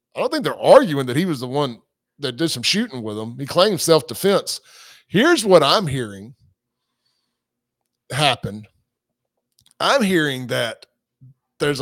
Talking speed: 140 wpm